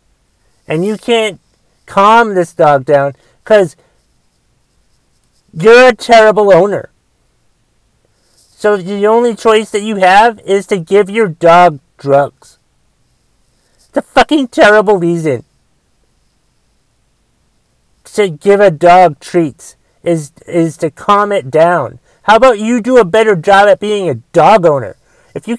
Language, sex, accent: English, male, American